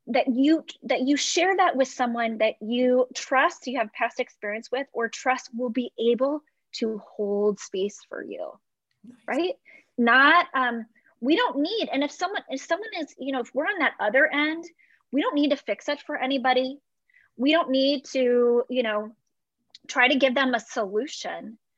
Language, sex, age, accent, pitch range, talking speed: English, female, 20-39, American, 240-300 Hz, 180 wpm